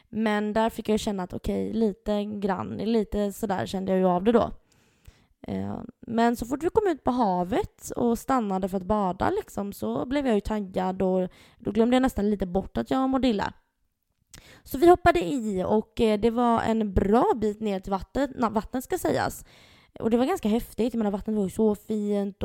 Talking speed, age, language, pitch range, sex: 205 wpm, 20-39, Swedish, 195-245 Hz, female